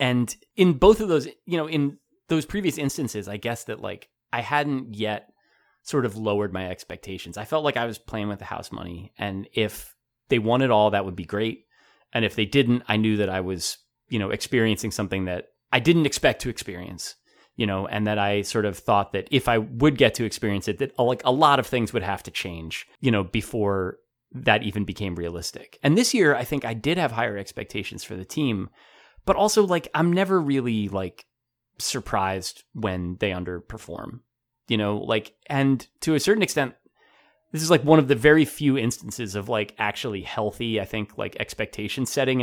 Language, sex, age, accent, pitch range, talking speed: English, male, 30-49, American, 105-140 Hz, 205 wpm